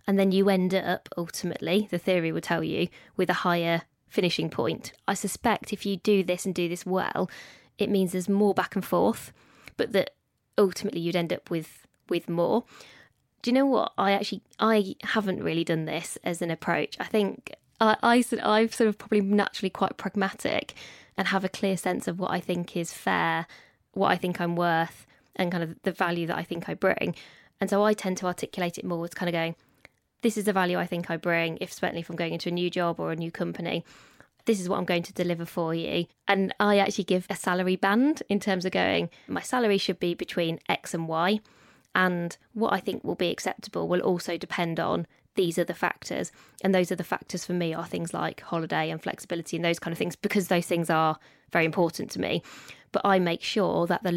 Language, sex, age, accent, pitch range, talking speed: English, female, 20-39, British, 170-200 Hz, 220 wpm